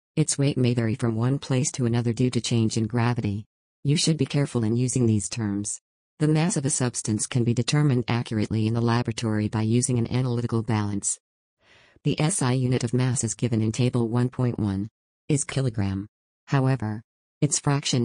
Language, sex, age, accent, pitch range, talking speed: English, female, 50-69, American, 110-135 Hz, 180 wpm